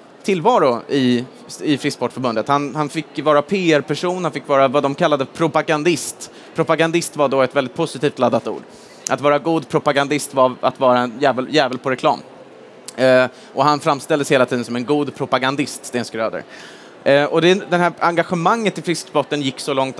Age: 30-49